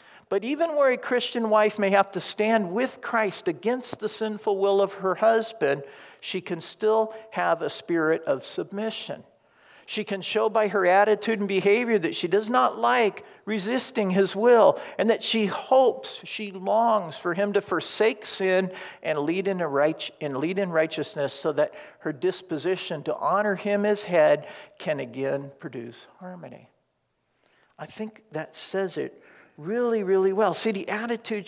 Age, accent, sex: 50-69, American, male